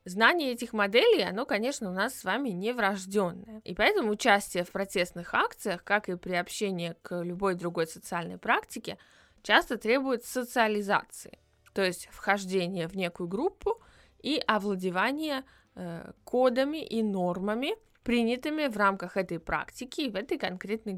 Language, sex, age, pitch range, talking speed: Russian, female, 20-39, 185-235 Hz, 145 wpm